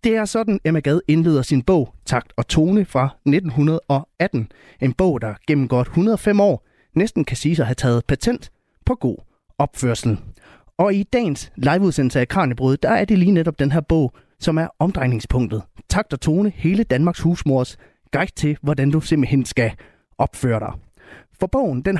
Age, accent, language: 30-49, native, Danish